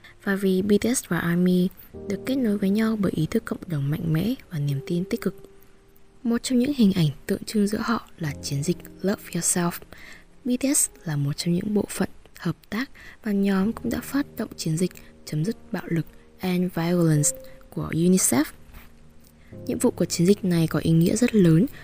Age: 20-39